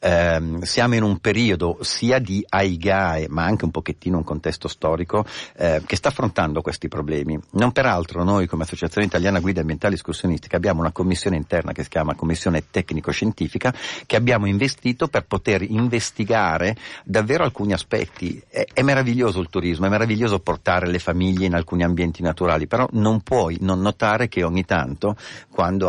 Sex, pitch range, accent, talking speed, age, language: male, 85-110 Hz, native, 165 wpm, 50-69, Italian